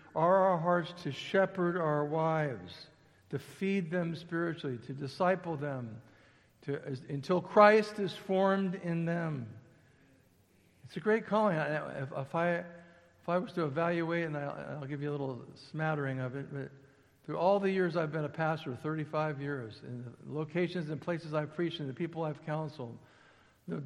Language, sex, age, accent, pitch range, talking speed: English, male, 60-79, American, 125-165 Hz, 175 wpm